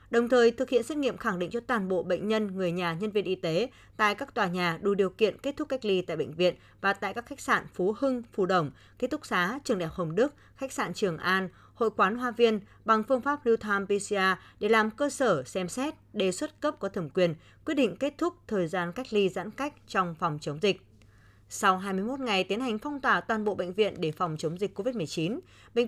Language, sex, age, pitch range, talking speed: Vietnamese, female, 20-39, 180-245 Hz, 245 wpm